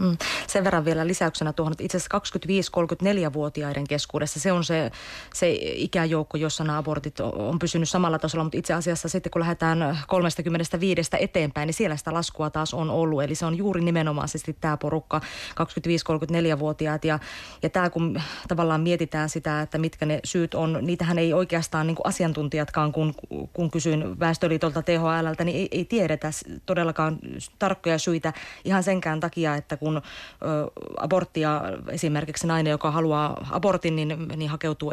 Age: 30-49